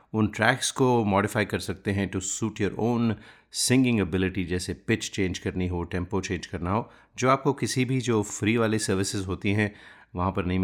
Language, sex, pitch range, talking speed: Hindi, male, 95-115 Hz, 195 wpm